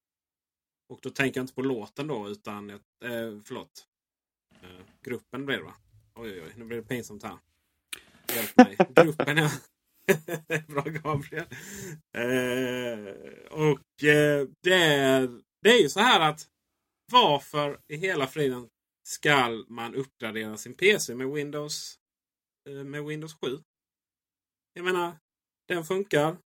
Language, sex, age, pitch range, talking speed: Swedish, male, 30-49, 120-165 Hz, 130 wpm